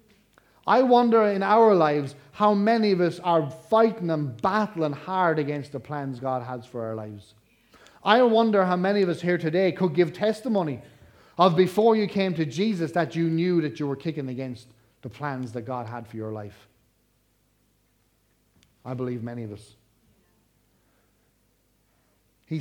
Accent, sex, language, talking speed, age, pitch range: Irish, male, English, 160 wpm, 30-49, 120-175 Hz